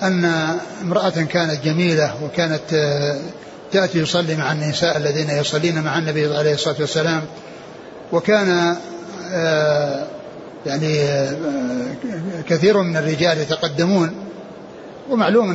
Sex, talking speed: male, 90 wpm